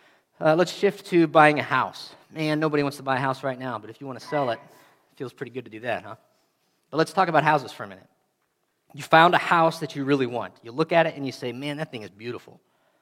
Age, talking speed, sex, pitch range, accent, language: 40-59, 270 wpm, male, 130-155 Hz, American, English